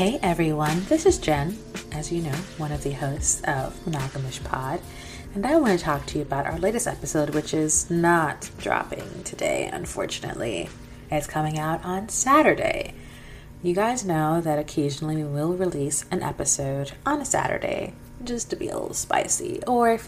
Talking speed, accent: 175 wpm, American